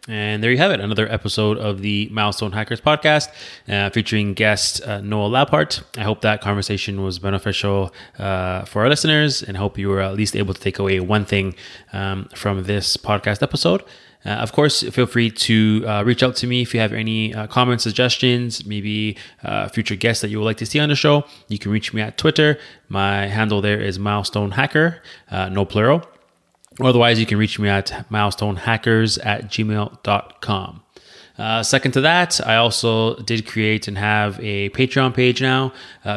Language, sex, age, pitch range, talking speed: English, male, 20-39, 100-115 Hz, 190 wpm